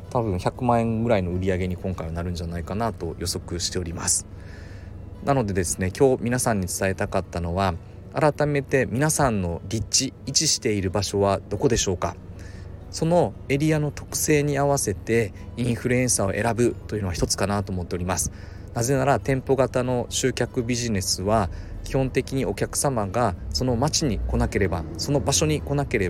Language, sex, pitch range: Japanese, male, 95-130 Hz